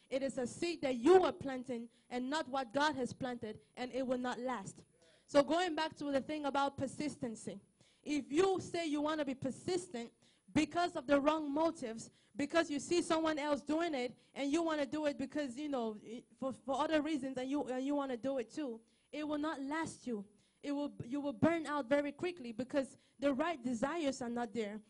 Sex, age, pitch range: female, 20-39, 245-300 Hz